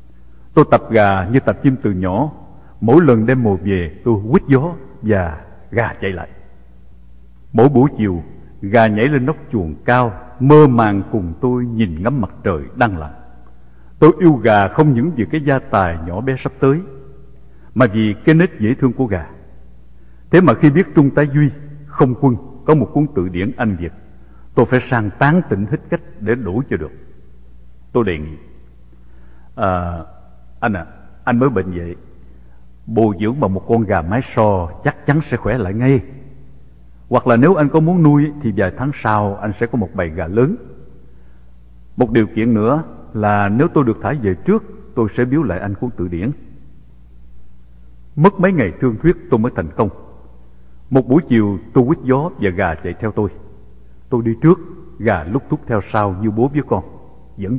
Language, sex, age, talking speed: English, male, 60-79, 190 wpm